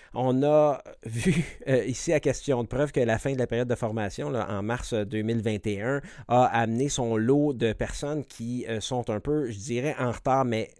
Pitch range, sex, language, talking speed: 115-150 Hz, male, French, 205 wpm